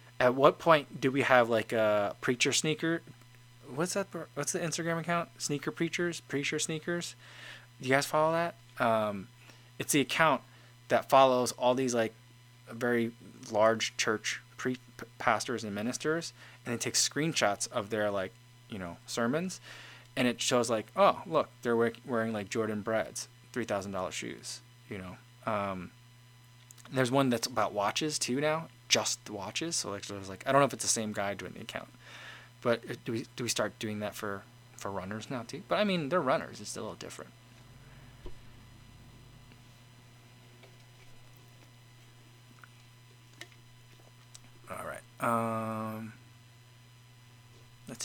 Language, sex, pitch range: English, male, 115-135 Hz